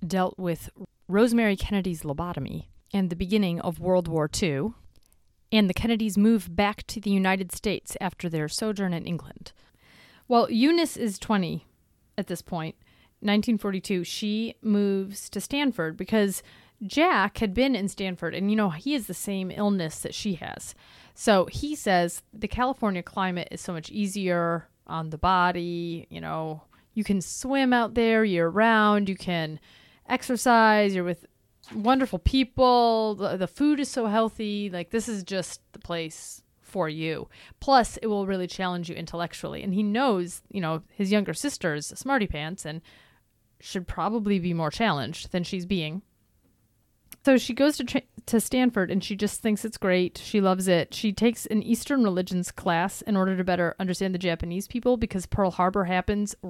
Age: 30-49